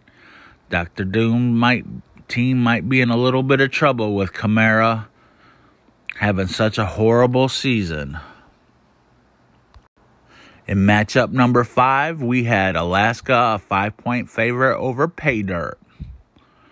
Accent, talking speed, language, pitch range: American, 115 wpm, English, 100-125 Hz